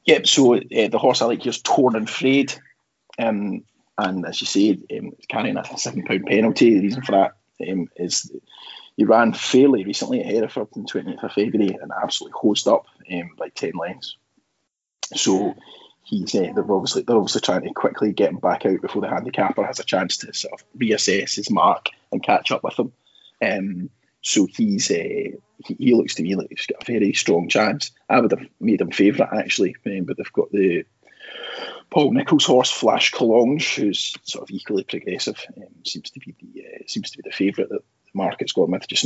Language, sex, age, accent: English, male, 20-39, British